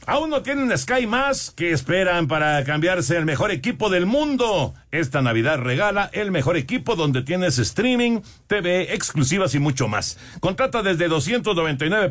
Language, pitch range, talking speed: Spanish, 130-190 Hz, 155 wpm